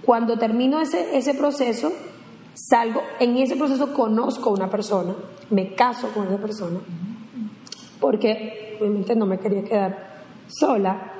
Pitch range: 205-245 Hz